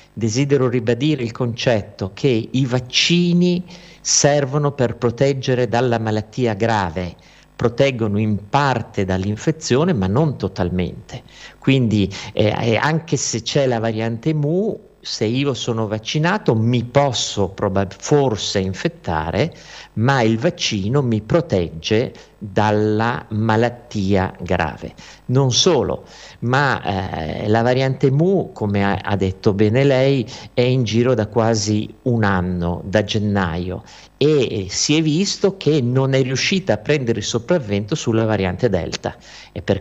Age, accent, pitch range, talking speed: 50-69, native, 100-140 Hz, 125 wpm